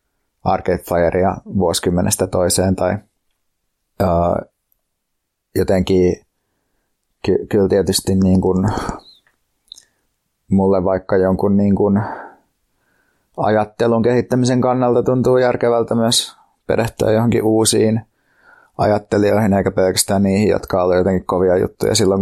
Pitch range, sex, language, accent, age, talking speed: 95-105 Hz, male, Finnish, native, 30-49, 95 wpm